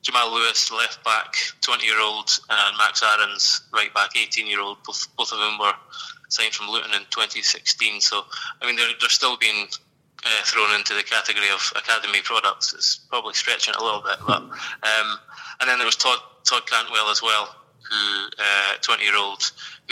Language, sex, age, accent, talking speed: English, male, 20-39, British, 165 wpm